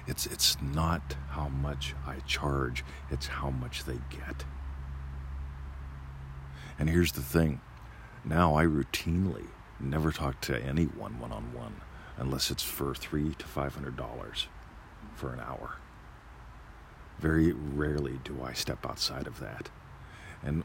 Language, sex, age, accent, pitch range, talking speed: English, male, 50-69, American, 70-85 Hz, 135 wpm